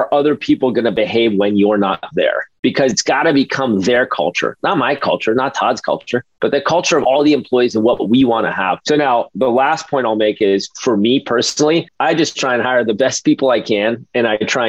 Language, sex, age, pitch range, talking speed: English, male, 30-49, 115-140 Hz, 240 wpm